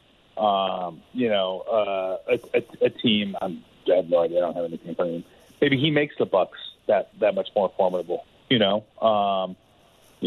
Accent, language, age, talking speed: American, English, 30-49, 200 wpm